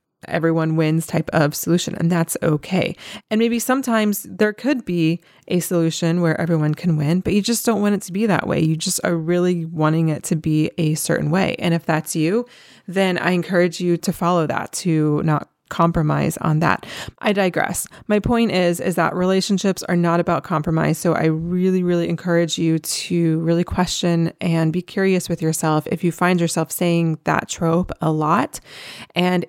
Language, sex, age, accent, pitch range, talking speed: English, female, 20-39, American, 160-190 Hz, 190 wpm